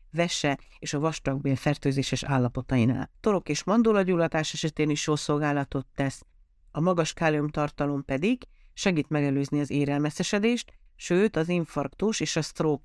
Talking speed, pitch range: 130 wpm, 140-180 Hz